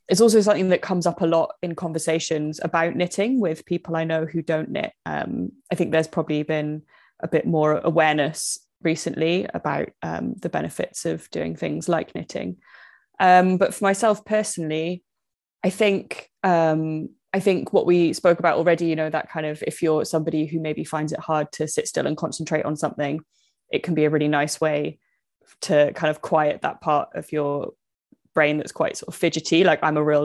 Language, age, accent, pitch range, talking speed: English, 20-39, British, 150-170 Hz, 195 wpm